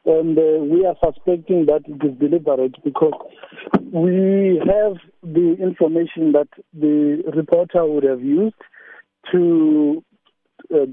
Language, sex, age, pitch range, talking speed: English, male, 60-79, 135-165 Hz, 120 wpm